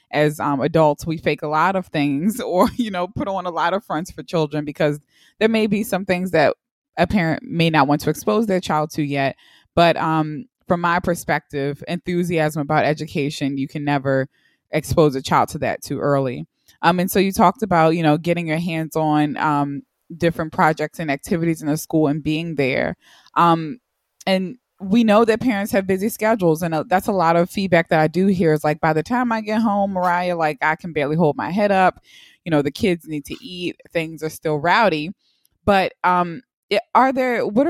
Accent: American